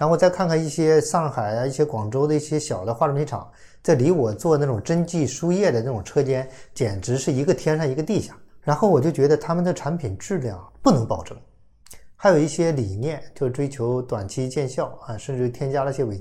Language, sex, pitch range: Chinese, male, 115-150 Hz